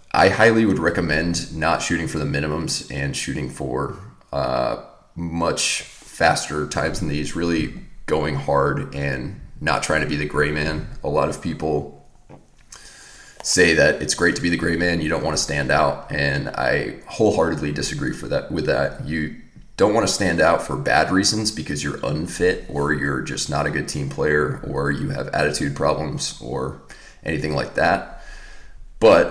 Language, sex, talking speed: English, male, 175 wpm